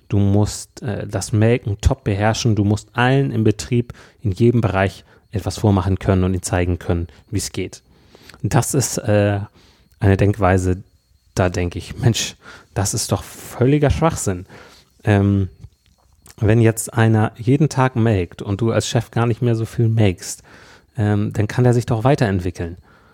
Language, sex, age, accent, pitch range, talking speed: German, male, 30-49, German, 95-110 Hz, 165 wpm